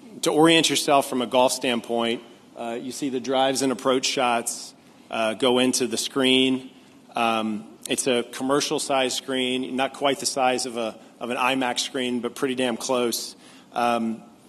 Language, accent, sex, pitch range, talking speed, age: English, American, male, 120-140 Hz, 165 wpm, 40-59